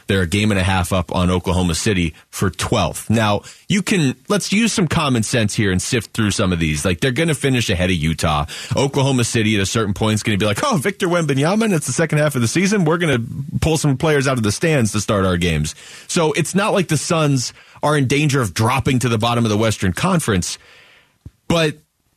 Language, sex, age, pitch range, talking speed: English, male, 30-49, 100-145 Hz, 240 wpm